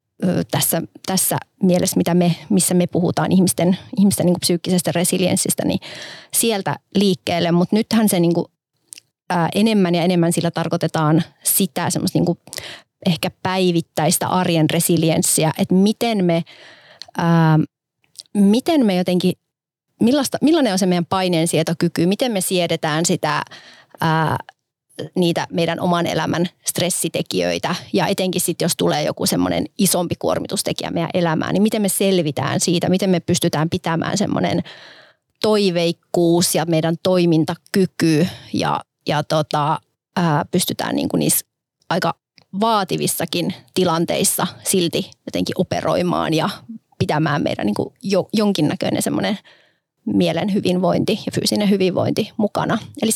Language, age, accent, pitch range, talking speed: Finnish, 30-49, native, 165-190 Hz, 120 wpm